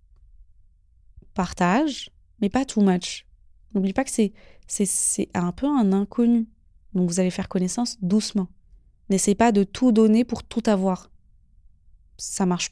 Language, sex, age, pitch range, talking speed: French, female, 20-39, 180-230 Hz, 145 wpm